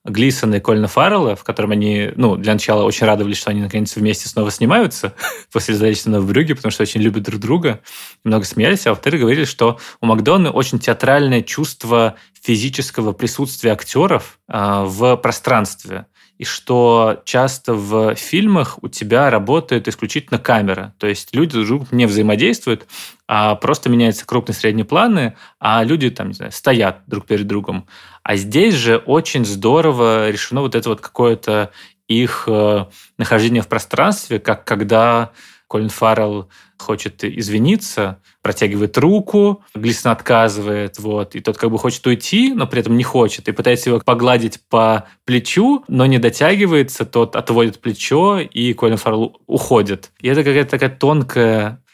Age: 20-39